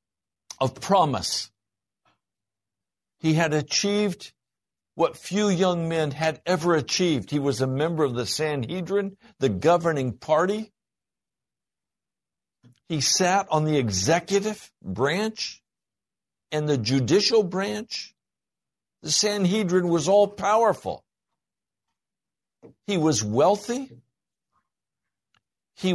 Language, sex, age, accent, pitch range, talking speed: English, male, 60-79, American, 140-190 Hz, 95 wpm